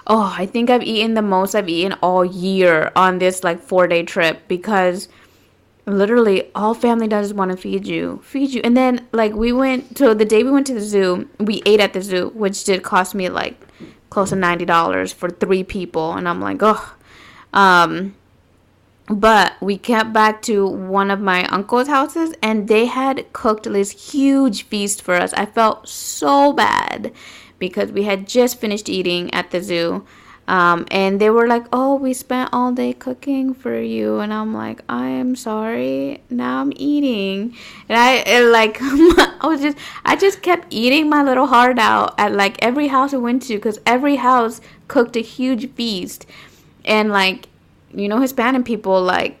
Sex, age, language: female, 20-39, English